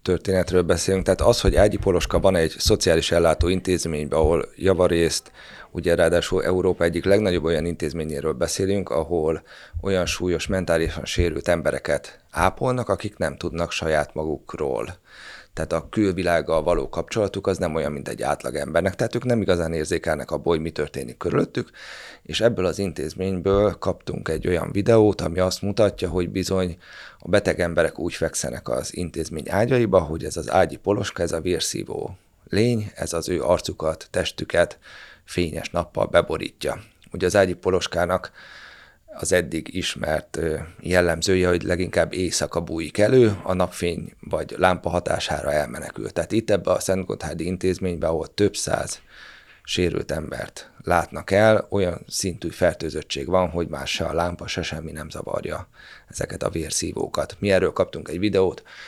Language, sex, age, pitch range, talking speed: Hungarian, male, 30-49, 85-95 Hz, 150 wpm